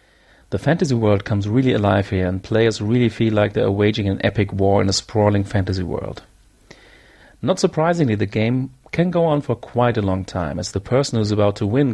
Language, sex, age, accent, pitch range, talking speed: English, male, 40-59, German, 100-120 Hz, 215 wpm